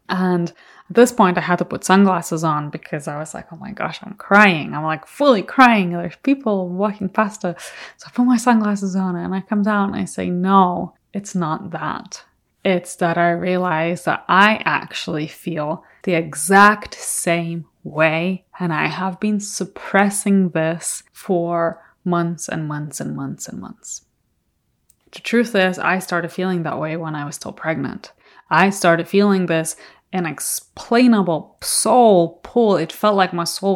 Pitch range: 170-205 Hz